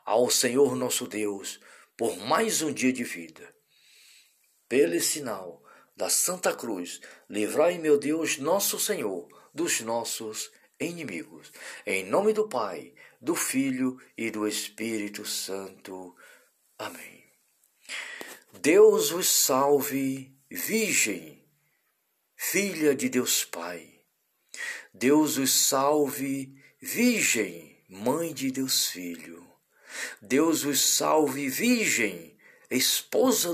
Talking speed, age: 100 wpm, 50-69